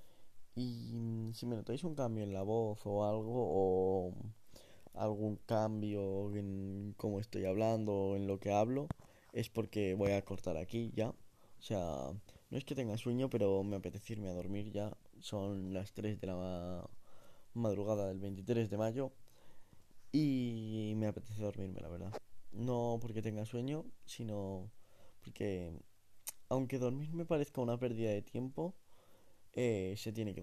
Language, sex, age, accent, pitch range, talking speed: Spanish, male, 10-29, Spanish, 100-125 Hz, 155 wpm